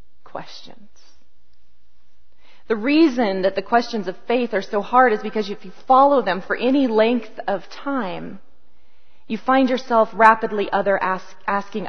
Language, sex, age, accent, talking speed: English, female, 30-49, American, 130 wpm